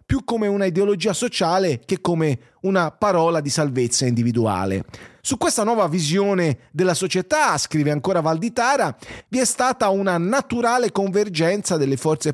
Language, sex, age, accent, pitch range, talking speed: English, male, 30-49, Italian, 155-210 Hz, 140 wpm